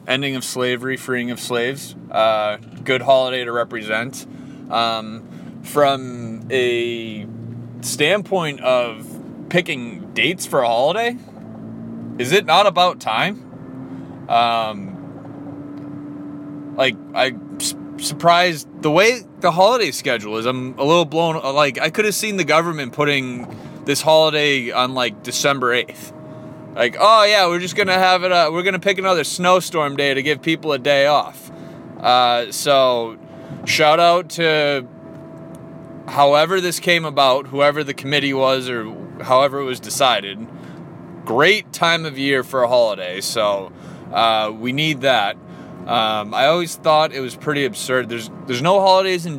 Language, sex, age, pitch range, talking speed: English, male, 20-39, 125-165 Hz, 145 wpm